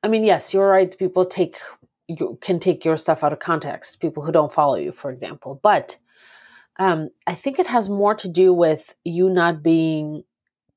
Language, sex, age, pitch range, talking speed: English, female, 30-49, 160-200 Hz, 195 wpm